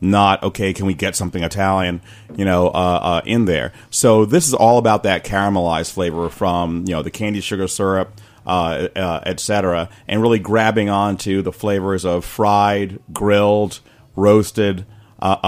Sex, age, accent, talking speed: male, 40-59, American, 170 wpm